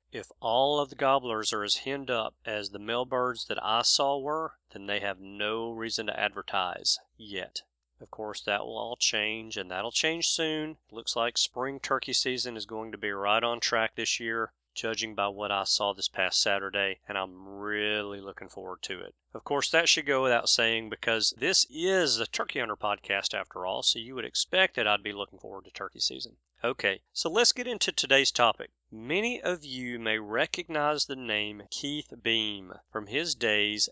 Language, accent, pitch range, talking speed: English, American, 105-145 Hz, 195 wpm